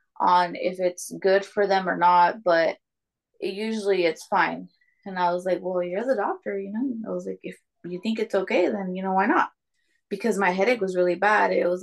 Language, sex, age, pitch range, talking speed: English, female, 20-39, 180-215 Hz, 225 wpm